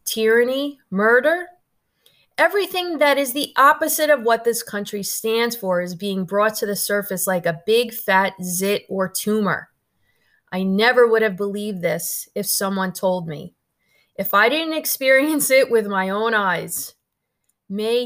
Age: 30-49